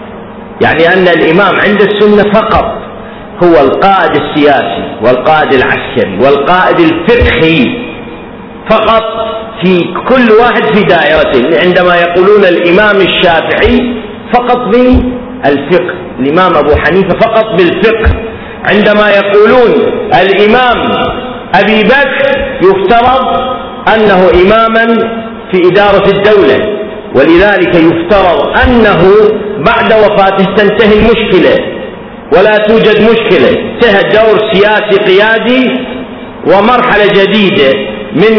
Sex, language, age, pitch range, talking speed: male, Arabic, 50-69, 185-230 Hz, 90 wpm